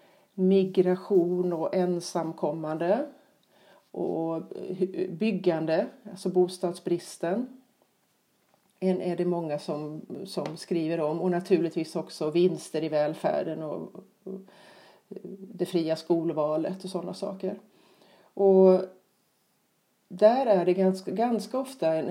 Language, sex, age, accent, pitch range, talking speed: Swedish, female, 40-59, native, 165-195 Hz, 100 wpm